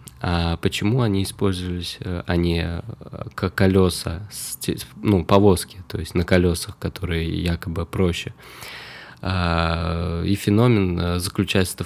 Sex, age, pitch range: male, 20-39, 85-100 Hz